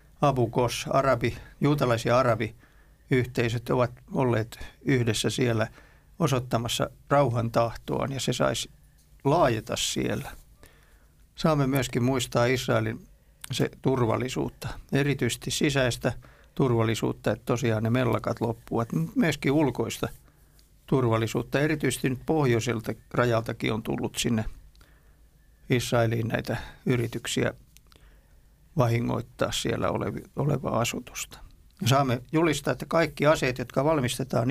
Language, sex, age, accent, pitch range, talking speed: Finnish, male, 50-69, native, 115-140 Hz, 105 wpm